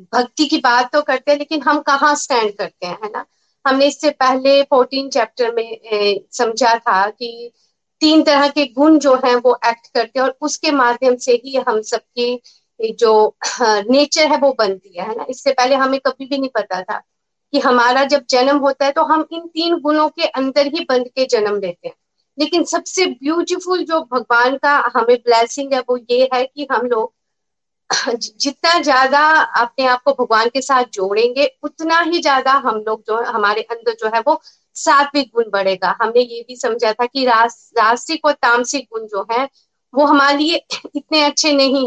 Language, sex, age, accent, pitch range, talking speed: Hindi, female, 50-69, native, 235-295 Hz, 190 wpm